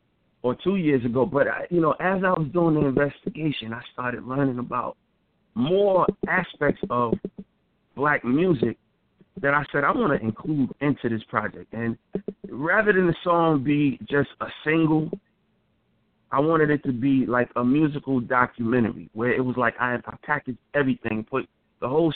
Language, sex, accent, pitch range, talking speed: English, male, American, 120-165 Hz, 165 wpm